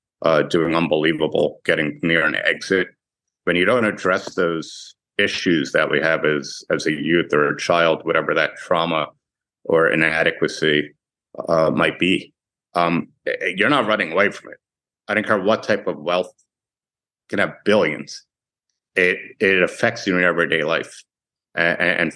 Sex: male